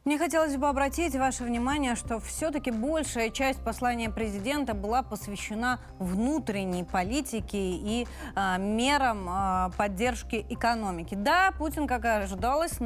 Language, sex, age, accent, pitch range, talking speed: Russian, female, 20-39, native, 215-270 Hz, 120 wpm